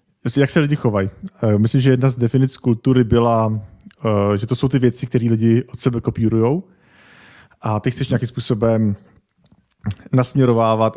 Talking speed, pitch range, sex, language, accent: 150 wpm, 110-125 Hz, male, Czech, native